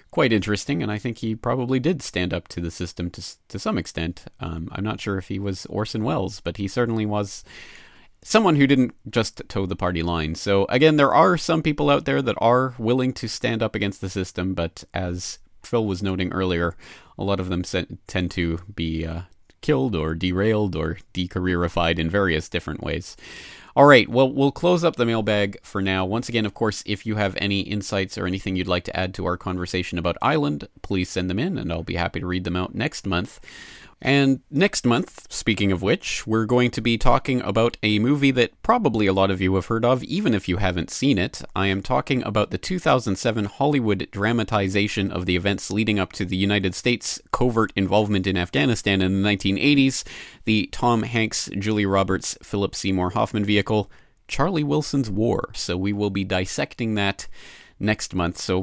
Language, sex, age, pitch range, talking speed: English, male, 30-49, 90-115 Hz, 200 wpm